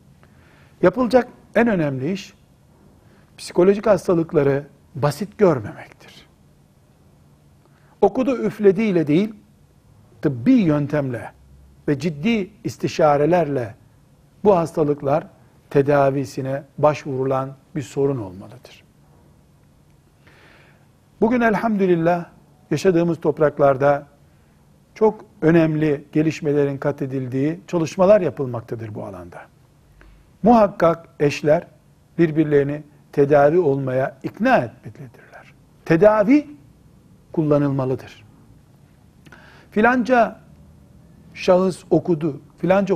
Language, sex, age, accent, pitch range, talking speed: Turkish, male, 60-79, native, 135-185 Hz, 70 wpm